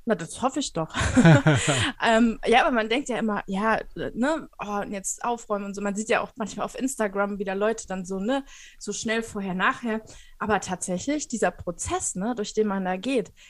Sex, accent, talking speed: female, German, 205 wpm